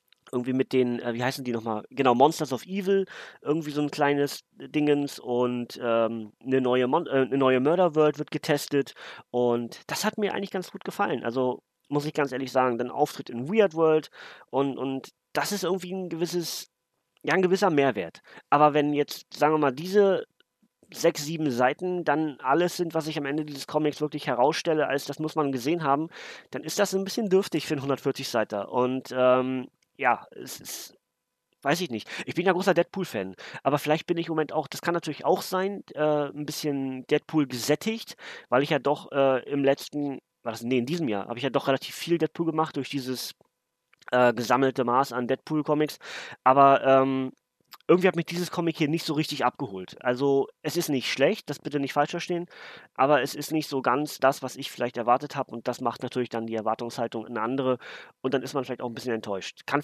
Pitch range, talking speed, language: 125-155 Hz, 205 wpm, German